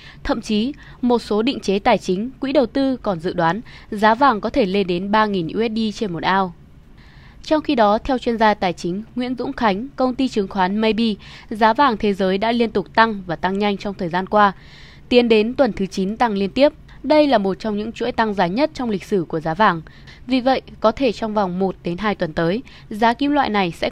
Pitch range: 190-245 Hz